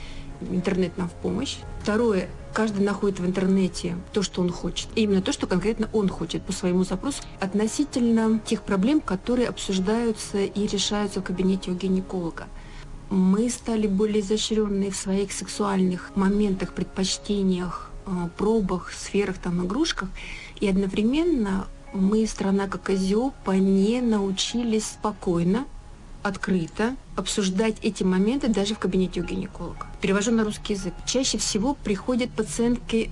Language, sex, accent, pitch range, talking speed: Russian, female, native, 185-220 Hz, 130 wpm